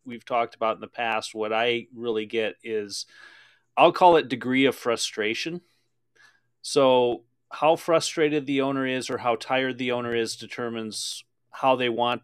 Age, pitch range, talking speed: 30-49, 110-125 Hz, 160 wpm